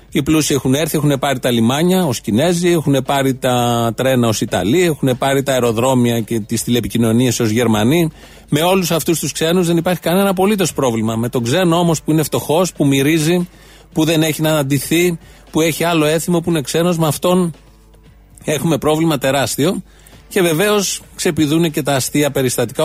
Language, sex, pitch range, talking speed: Greek, male, 130-165 Hz, 180 wpm